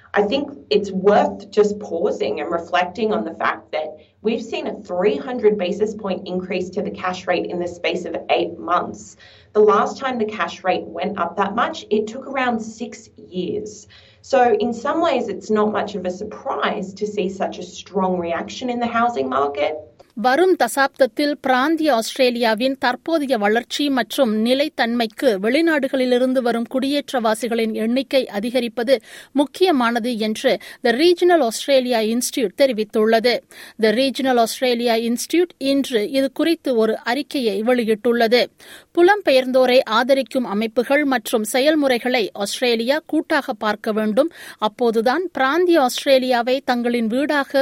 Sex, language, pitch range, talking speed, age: female, Tamil, 215-270 Hz, 135 wpm, 30-49